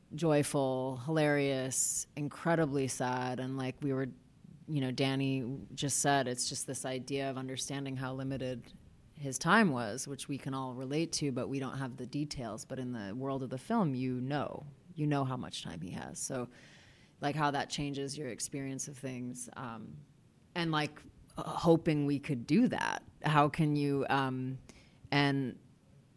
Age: 30-49